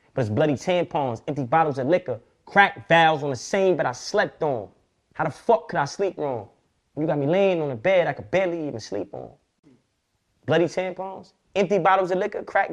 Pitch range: 160-270 Hz